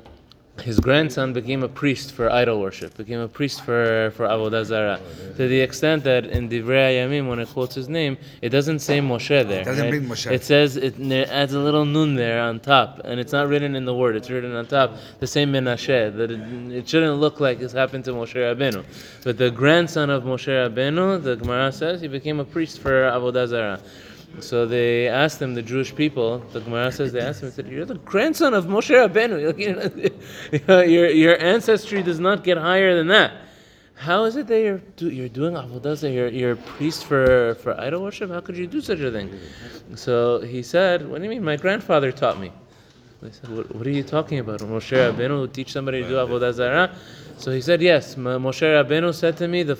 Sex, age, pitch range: male, 20-39, 120-150 Hz